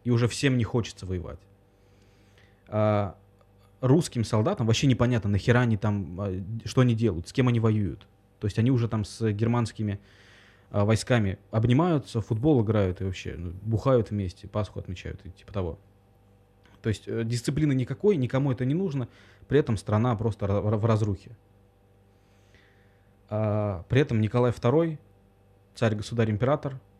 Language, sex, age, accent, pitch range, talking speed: Russian, male, 20-39, native, 100-120 Hz, 140 wpm